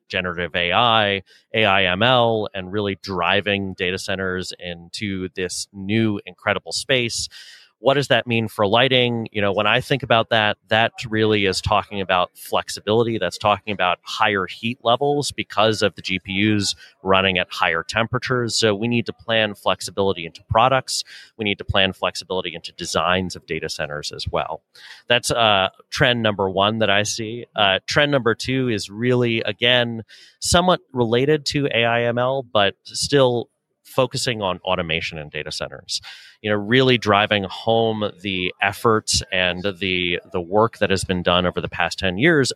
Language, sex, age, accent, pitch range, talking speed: English, male, 30-49, American, 95-115 Hz, 165 wpm